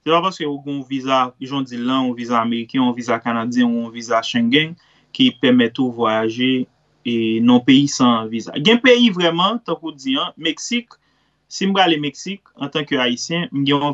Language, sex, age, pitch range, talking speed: French, male, 30-49, 125-170 Hz, 200 wpm